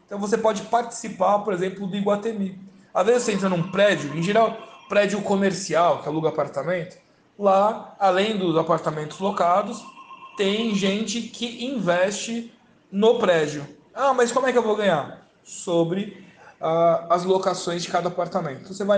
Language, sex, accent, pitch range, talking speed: Portuguese, male, Brazilian, 175-215 Hz, 160 wpm